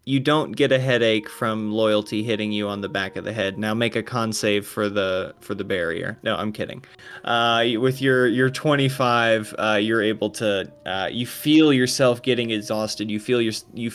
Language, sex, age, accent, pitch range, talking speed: English, male, 20-39, American, 110-150 Hz, 200 wpm